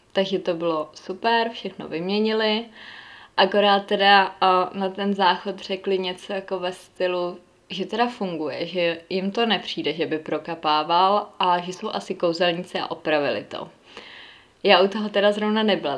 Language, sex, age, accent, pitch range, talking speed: Czech, female, 20-39, native, 170-195 Hz, 150 wpm